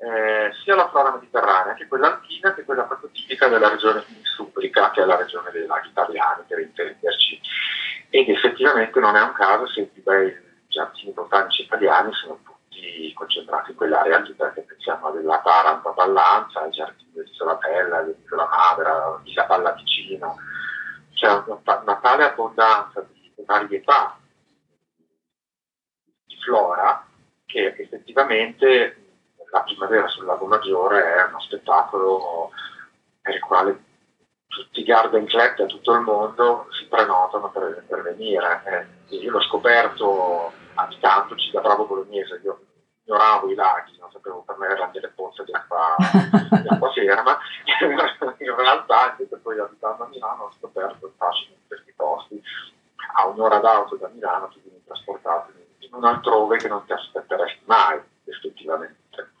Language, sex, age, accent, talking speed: Italian, male, 40-59, native, 150 wpm